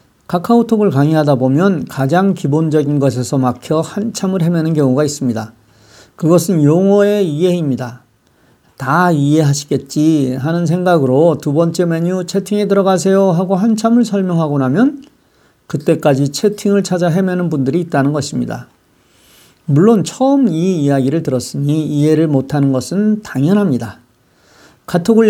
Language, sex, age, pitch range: Korean, male, 50-69, 140-205 Hz